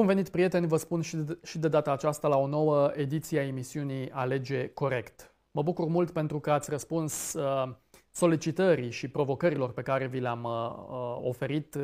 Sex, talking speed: male, 160 wpm